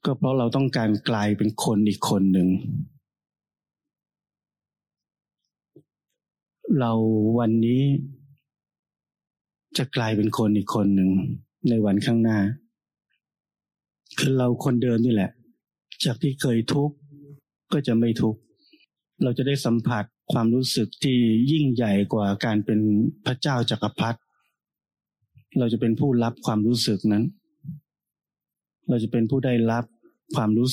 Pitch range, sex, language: 105-135 Hz, male, Thai